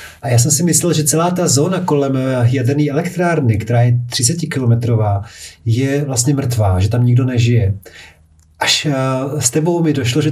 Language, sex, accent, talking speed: Czech, male, native, 155 wpm